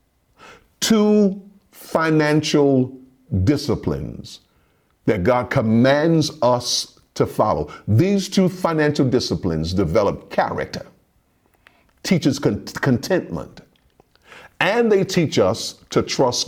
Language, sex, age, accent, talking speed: English, male, 50-69, American, 85 wpm